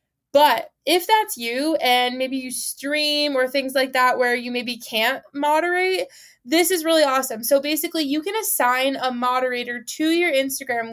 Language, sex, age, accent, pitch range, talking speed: English, female, 20-39, American, 240-295 Hz, 170 wpm